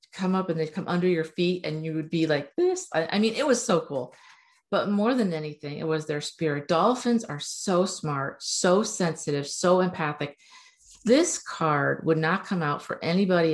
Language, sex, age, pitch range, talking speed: English, female, 50-69, 155-195 Hz, 195 wpm